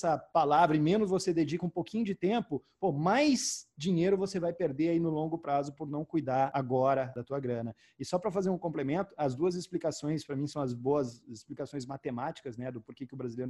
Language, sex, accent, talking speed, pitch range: Portuguese, male, Brazilian, 220 wpm, 130-160 Hz